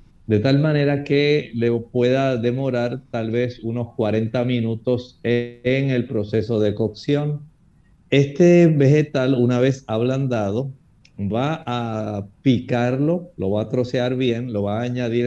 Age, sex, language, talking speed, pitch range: 50-69, male, Spanish, 135 wpm, 115-135 Hz